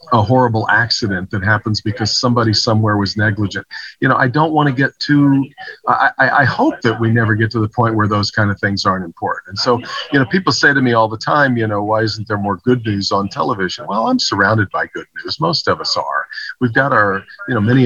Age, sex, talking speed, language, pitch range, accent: 50-69, male, 245 wpm, English, 105-125 Hz, American